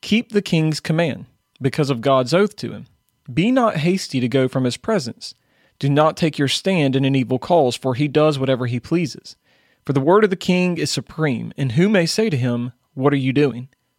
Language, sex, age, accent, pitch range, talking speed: English, male, 40-59, American, 135-175 Hz, 220 wpm